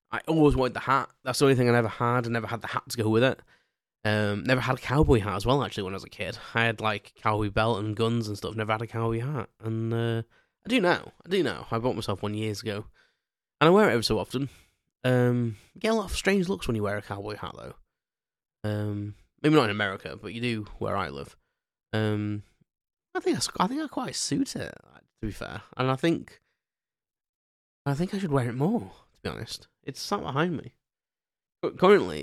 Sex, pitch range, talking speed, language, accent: male, 105-125 Hz, 235 wpm, English, British